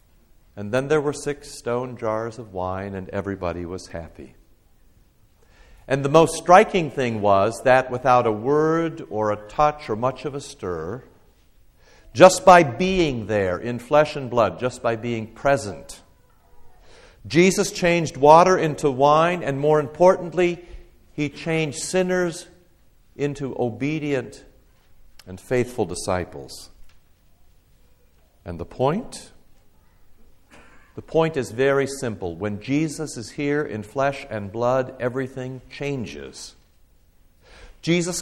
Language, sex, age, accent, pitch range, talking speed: English, male, 60-79, American, 105-165 Hz, 120 wpm